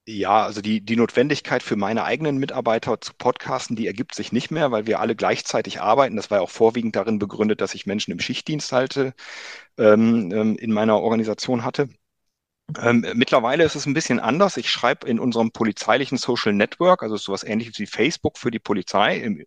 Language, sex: German, male